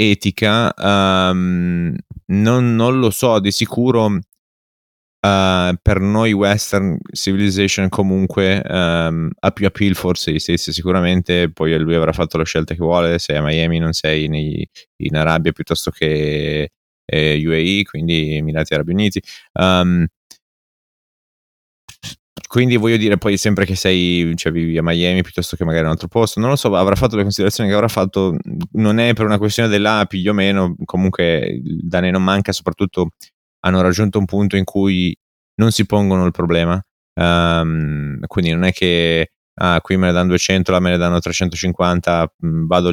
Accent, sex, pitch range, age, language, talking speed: native, male, 85-100 Hz, 20-39, Italian, 165 wpm